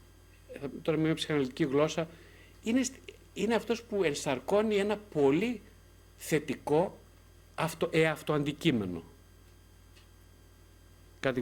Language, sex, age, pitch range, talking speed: Greek, male, 50-69, 110-170 Hz, 85 wpm